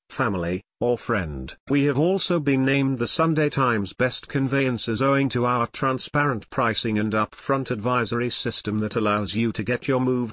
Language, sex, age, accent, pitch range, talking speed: English, male, 50-69, British, 110-140 Hz, 170 wpm